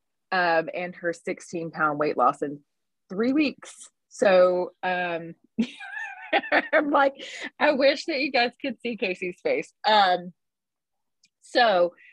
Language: English